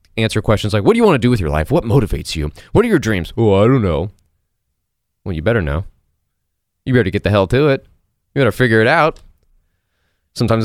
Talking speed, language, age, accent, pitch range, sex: 225 wpm, English, 30-49, American, 85-115 Hz, male